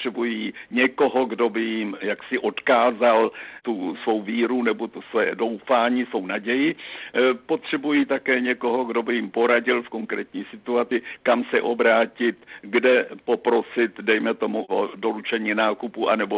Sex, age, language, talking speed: male, 60-79, Czech, 135 wpm